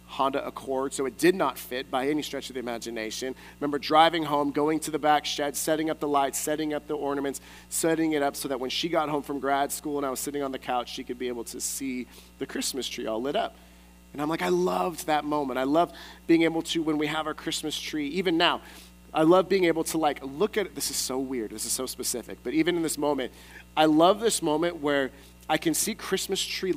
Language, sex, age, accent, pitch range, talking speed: English, male, 30-49, American, 130-170 Hz, 255 wpm